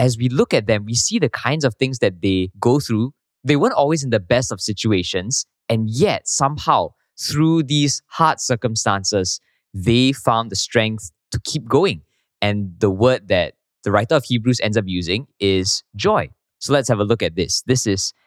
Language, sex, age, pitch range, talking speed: English, male, 20-39, 105-145 Hz, 195 wpm